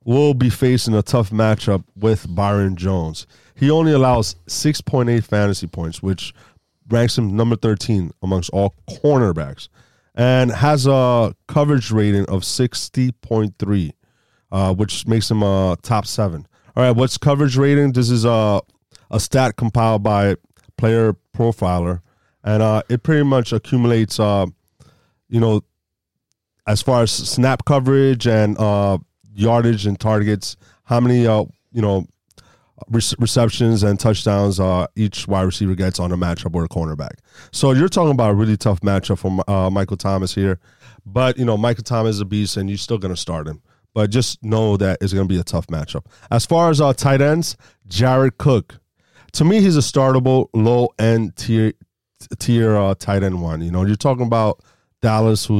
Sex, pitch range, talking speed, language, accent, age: male, 95-125 Hz, 165 wpm, English, American, 30-49